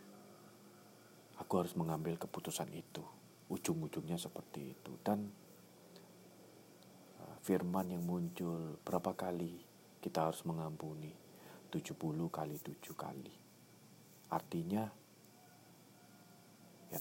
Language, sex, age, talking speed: Indonesian, male, 40-59, 80 wpm